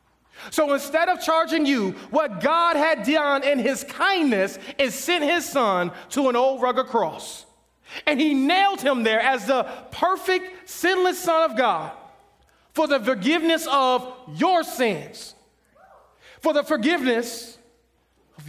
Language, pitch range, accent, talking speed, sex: English, 210-290 Hz, American, 140 wpm, male